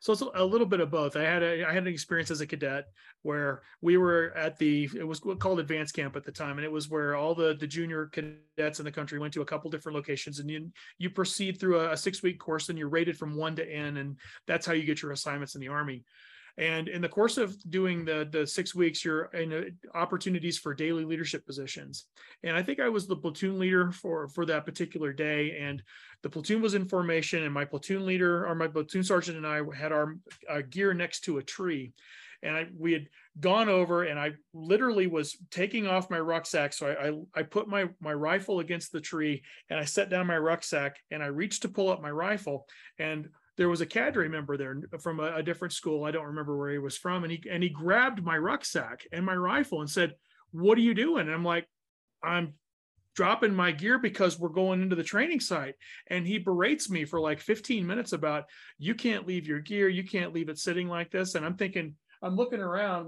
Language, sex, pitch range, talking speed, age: English, male, 150-185 Hz, 230 wpm, 30-49